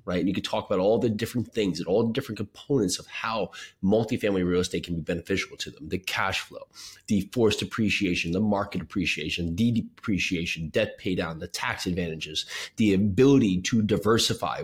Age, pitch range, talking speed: 30-49, 95-130 Hz, 185 wpm